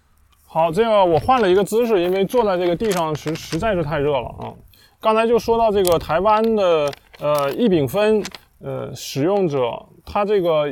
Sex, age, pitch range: male, 20-39, 145-210 Hz